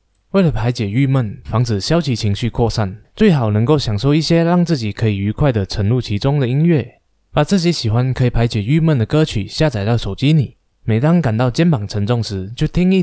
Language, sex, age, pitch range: Chinese, male, 20-39, 105-155 Hz